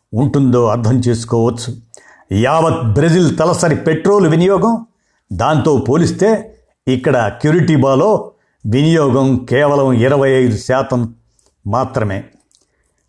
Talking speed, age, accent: 85 wpm, 50-69, native